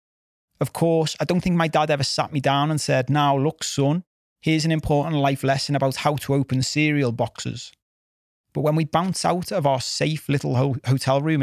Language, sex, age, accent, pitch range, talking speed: English, male, 30-49, British, 120-150 Hz, 200 wpm